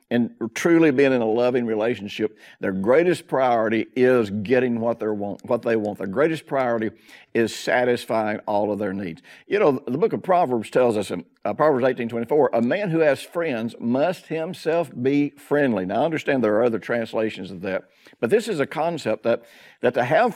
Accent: American